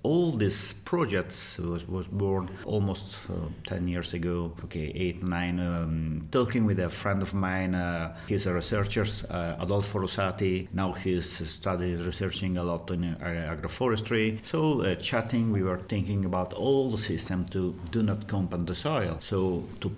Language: English